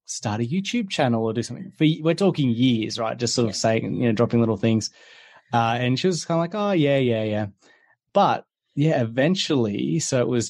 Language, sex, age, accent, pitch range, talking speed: English, male, 20-39, Australian, 105-130 Hz, 210 wpm